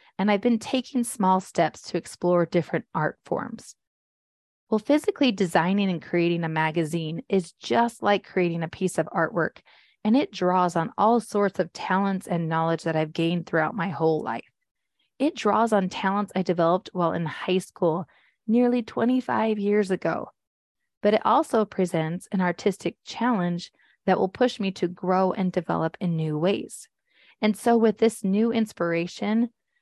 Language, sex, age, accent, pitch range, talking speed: English, female, 30-49, American, 170-210 Hz, 165 wpm